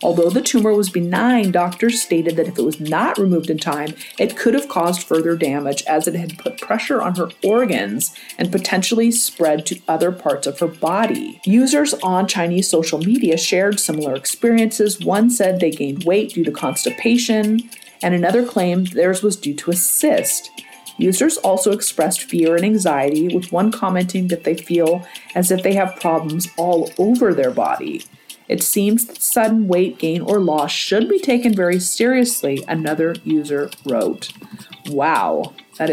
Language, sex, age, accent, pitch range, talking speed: English, female, 40-59, American, 160-220 Hz, 170 wpm